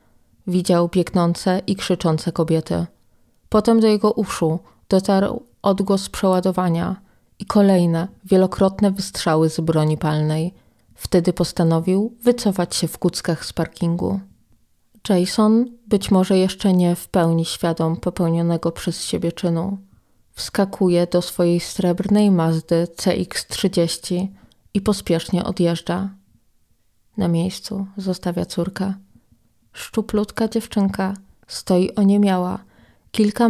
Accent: native